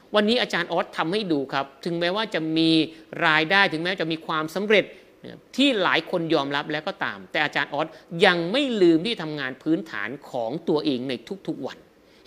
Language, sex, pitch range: Thai, male, 150-215 Hz